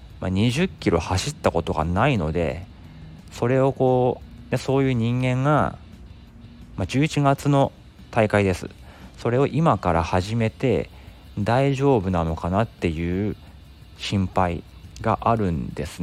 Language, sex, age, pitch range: Japanese, male, 40-59, 85-115 Hz